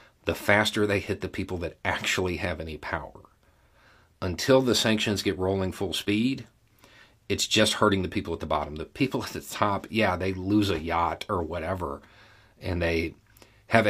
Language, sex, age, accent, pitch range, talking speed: English, male, 40-59, American, 85-105 Hz, 175 wpm